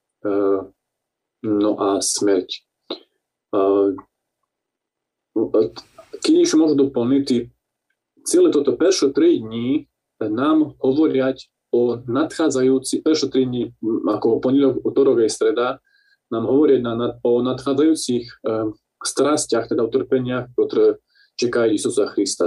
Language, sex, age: Slovak, male, 20-39